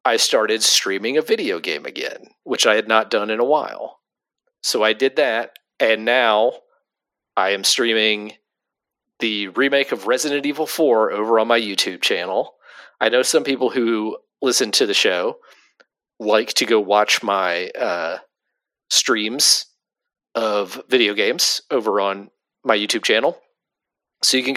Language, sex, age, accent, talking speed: English, male, 40-59, American, 150 wpm